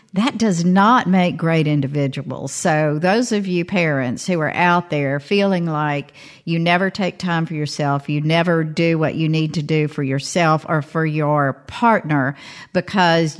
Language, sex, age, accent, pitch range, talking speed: English, female, 50-69, American, 155-205 Hz, 170 wpm